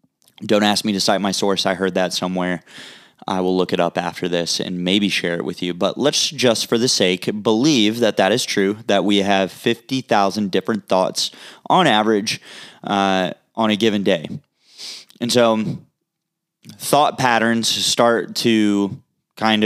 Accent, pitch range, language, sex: American, 100-115 Hz, English, male